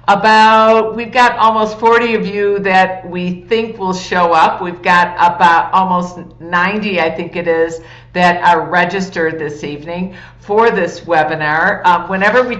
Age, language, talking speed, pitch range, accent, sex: 50-69, English, 155 wpm, 175-215 Hz, American, female